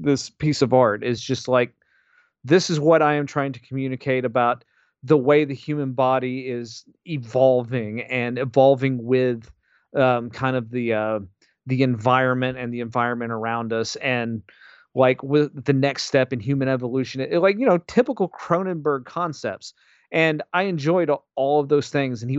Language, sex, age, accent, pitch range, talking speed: English, male, 40-59, American, 130-160 Hz, 170 wpm